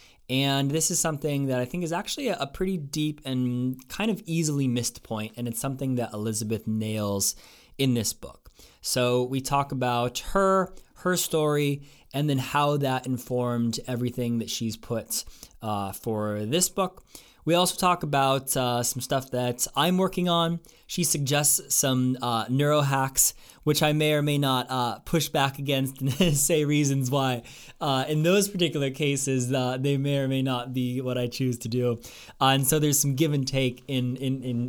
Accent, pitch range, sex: American, 125-155 Hz, male